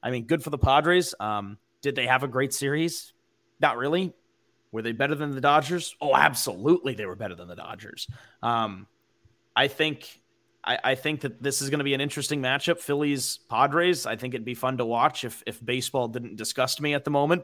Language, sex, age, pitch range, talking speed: English, male, 30-49, 115-140 Hz, 210 wpm